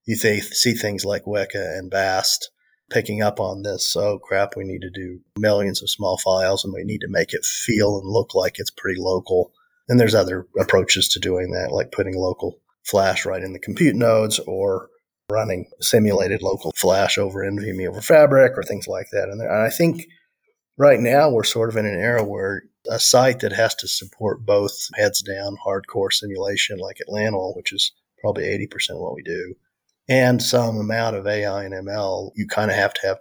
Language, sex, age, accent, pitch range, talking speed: English, male, 40-59, American, 95-115 Hz, 195 wpm